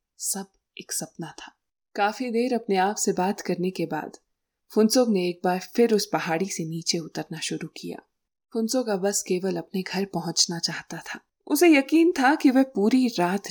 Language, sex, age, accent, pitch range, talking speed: Hindi, female, 20-39, native, 180-235 Hz, 175 wpm